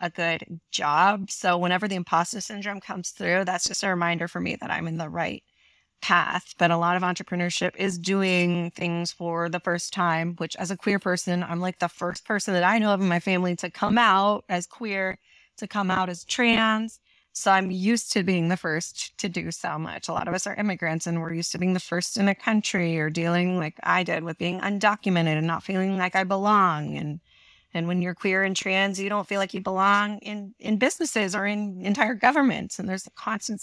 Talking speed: 225 wpm